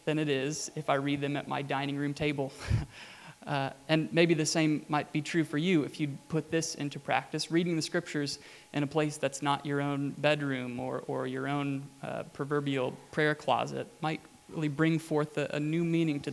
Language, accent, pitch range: English, American, 140-155 Hz